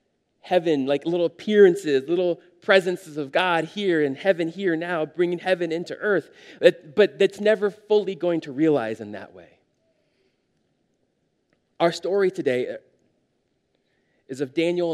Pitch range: 170-220 Hz